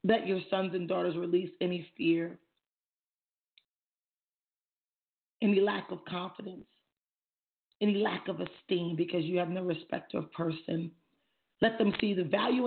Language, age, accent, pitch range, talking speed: English, 40-59, American, 165-210 Hz, 135 wpm